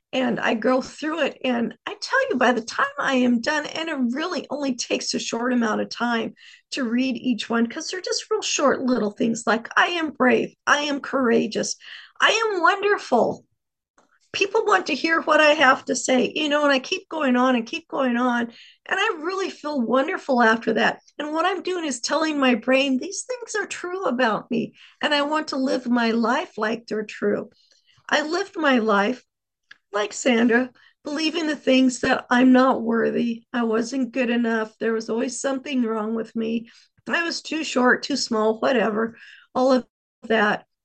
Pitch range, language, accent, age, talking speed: 235-295 Hz, English, American, 50-69, 190 wpm